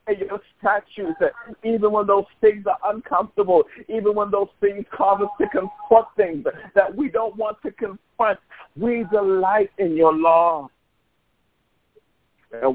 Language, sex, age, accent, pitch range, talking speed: English, male, 60-79, American, 160-235 Hz, 140 wpm